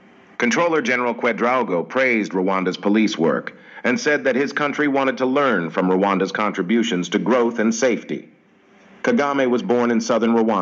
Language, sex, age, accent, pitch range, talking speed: English, male, 50-69, American, 100-120 Hz, 165 wpm